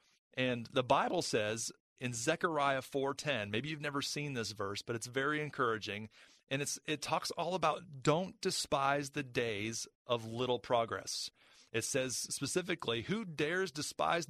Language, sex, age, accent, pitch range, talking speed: English, male, 40-59, American, 120-160 Hz, 150 wpm